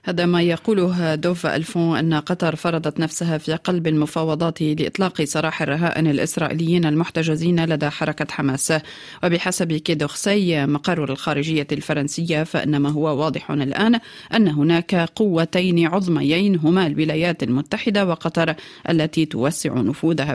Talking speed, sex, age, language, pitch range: 120 wpm, female, 40-59, Arabic, 150-175 Hz